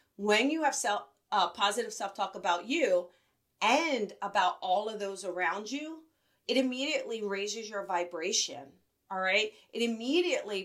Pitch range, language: 195-255 Hz, English